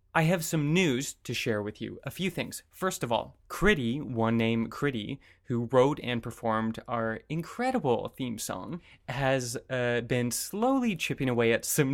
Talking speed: 170 wpm